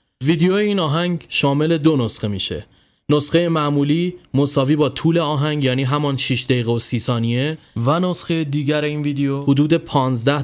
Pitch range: 125-150 Hz